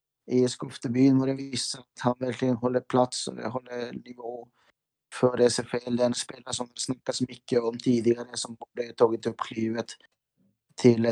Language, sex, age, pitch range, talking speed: Swedish, male, 30-49, 120-145 Hz, 160 wpm